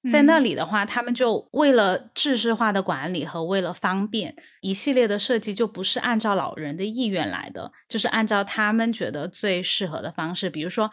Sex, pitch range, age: female, 175-235 Hz, 20-39